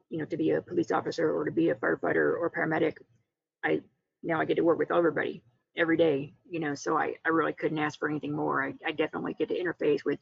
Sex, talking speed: female, 245 wpm